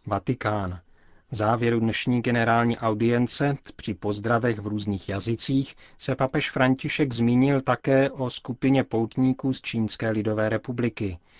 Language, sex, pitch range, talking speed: Czech, male, 105-125 Hz, 120 wpm